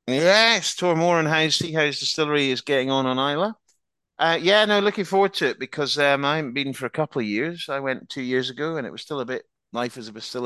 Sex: male